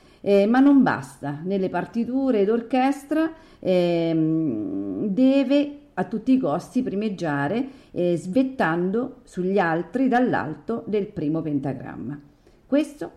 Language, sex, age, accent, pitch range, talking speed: Italian, female, 50-69, native, 175-245 Hz, 100 wpm